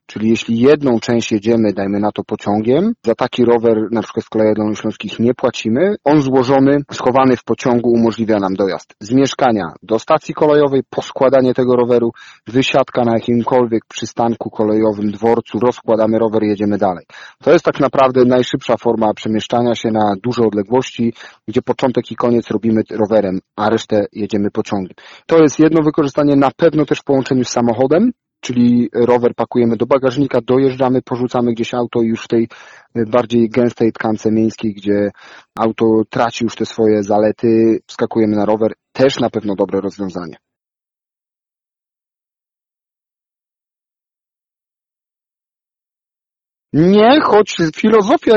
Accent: native